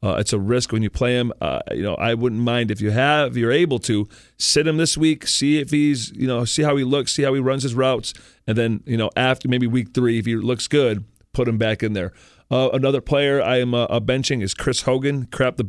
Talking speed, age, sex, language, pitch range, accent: 260 wpm, 40-59, male, English, 100-130 Hz, American